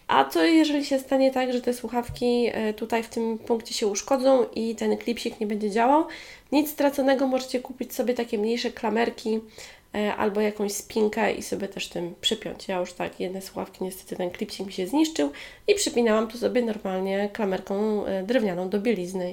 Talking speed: 175 wpm